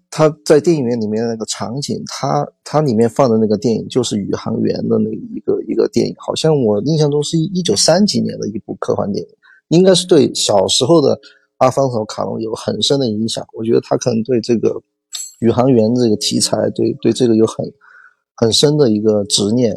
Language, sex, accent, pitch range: Chinese, male, native, 110-150 Hz